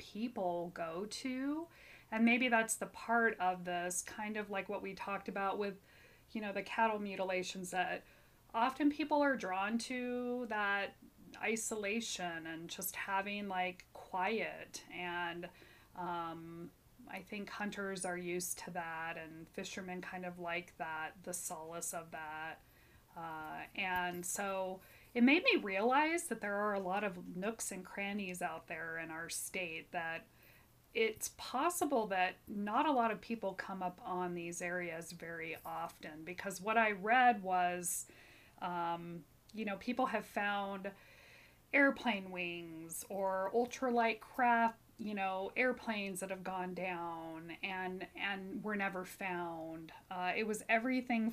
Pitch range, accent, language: 175-225 Hz, American, English